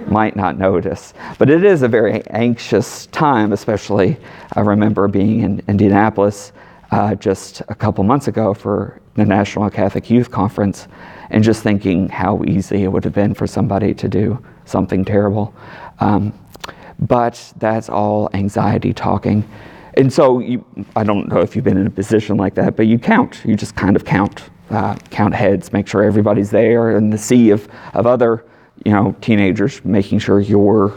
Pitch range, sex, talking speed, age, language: 100-115 Hz, male, 170 wpm, 40-59, English